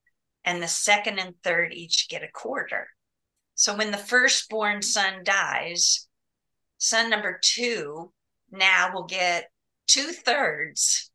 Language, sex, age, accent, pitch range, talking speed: English, female, 40-59, American, 170-210 Hz, 125 wpm